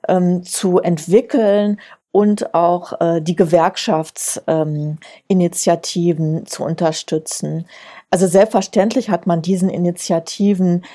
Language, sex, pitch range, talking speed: English, female, 170-195 Hz, 90 wpm